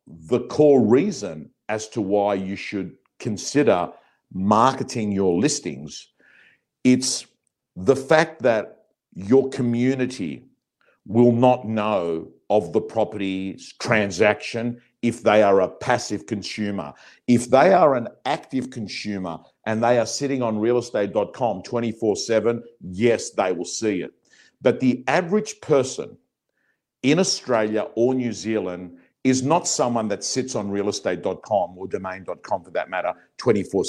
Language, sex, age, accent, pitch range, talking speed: English, male, 50-69, Australian, 105-125 Hz, 125 wpm